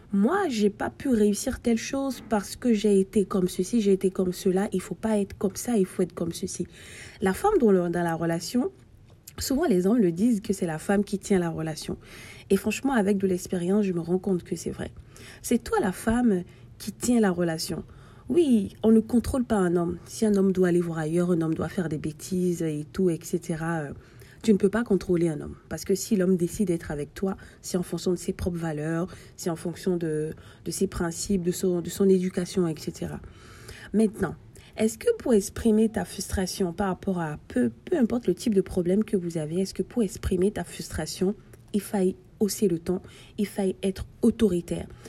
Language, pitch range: French, 175-210 Hz